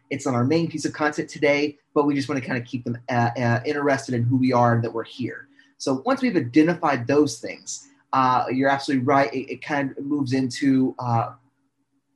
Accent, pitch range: American, 120-140 Hz